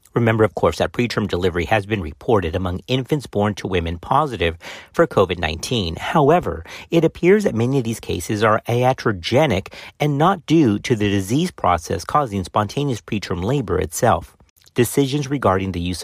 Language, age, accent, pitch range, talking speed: English, 50-69, American, 95-135 Hz, 160 wpm